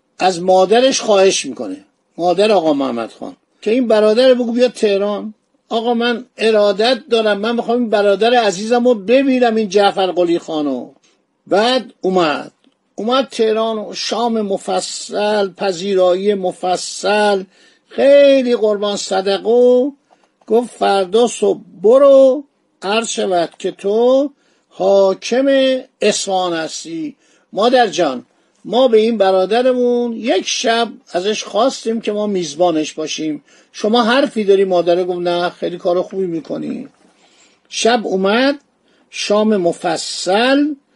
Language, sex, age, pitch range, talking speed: Persian, male, 50-69, 185-245 Hz, 110 wpm